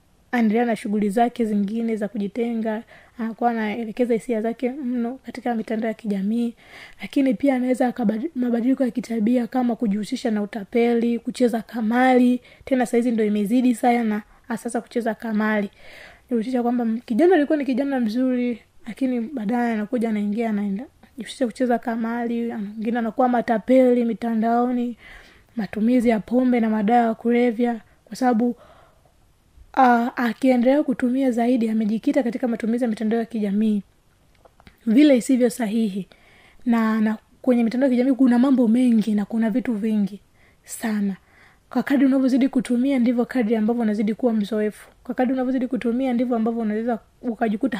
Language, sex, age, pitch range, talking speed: Swahili, female, 20-39, 225-255 Hz, 140 wpm